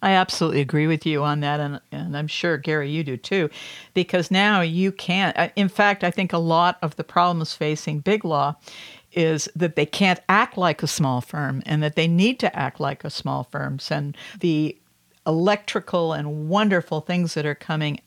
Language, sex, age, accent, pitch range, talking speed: English, female, 60-79, American, 150-180 Hz, 195 wpm